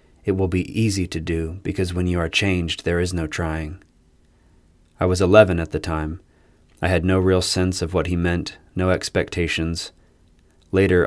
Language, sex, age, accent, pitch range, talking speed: English, male, 30-49, American, 85-95 Hz, 180 wpm